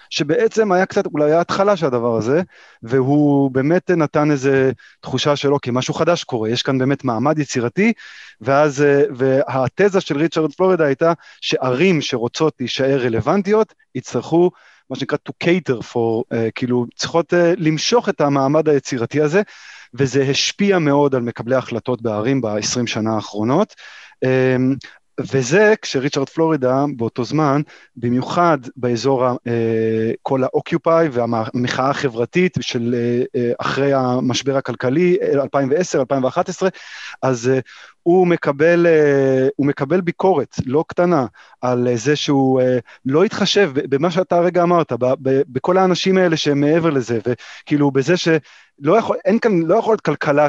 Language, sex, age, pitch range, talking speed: Hebrew, male, 30-49, 130-170 Hz, 130 wpm